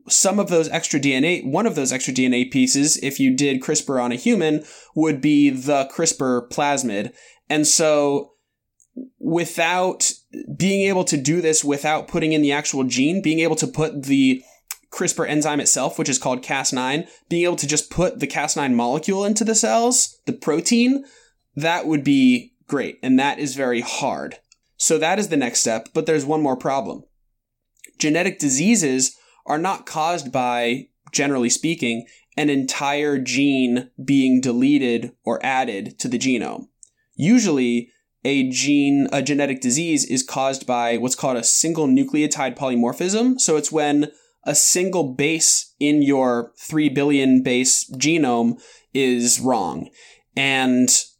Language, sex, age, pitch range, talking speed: English, male, 20-39, 130-165 Hz, 150 wpm